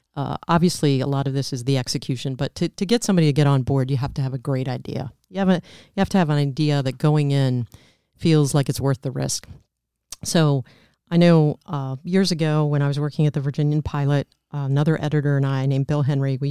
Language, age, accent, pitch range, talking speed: English, 40-59, American, 135-165 Hz, 240 wpm